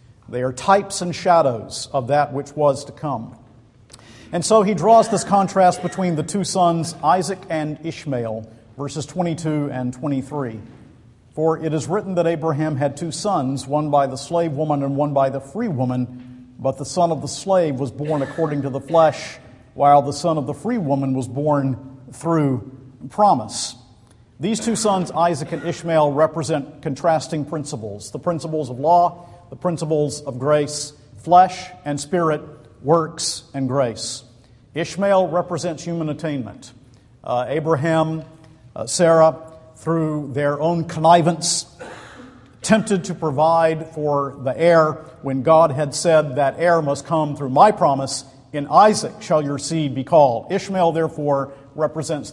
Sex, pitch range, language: male, 135-165 Hz, English